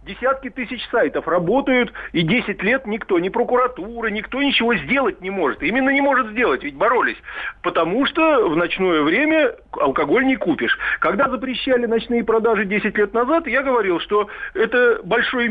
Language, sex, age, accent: Russian, male, 50-69, native